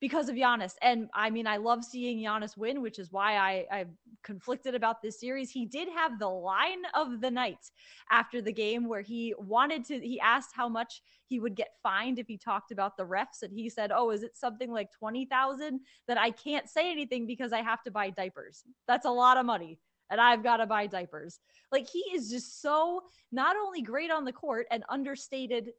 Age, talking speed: 20-39, 215 wpm